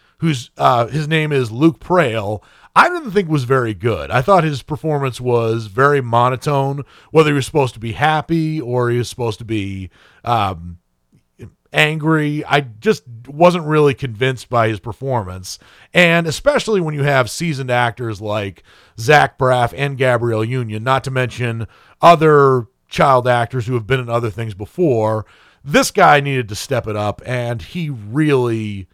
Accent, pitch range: American, 115-160 Hz